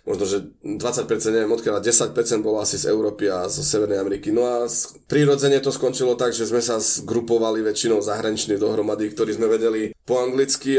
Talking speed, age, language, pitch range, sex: 180 wpm, 20-39, Slovak, 115-140 Hz, male